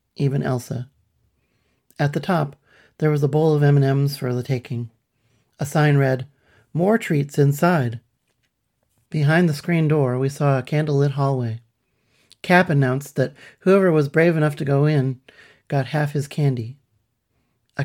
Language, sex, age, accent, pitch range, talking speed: English, male, 40-59, American, 125-150 Hz, 150 wpm